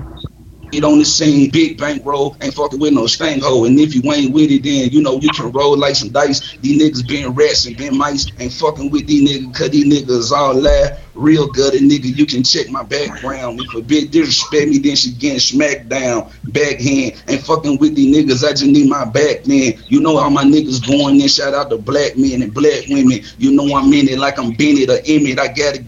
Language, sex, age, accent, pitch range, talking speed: English, male, 30-49, American, 145-190 Hz, 235 wpm